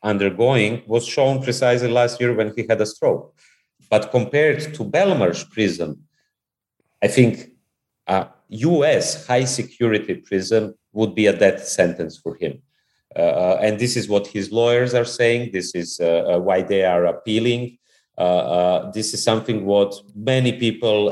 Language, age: English, 40-59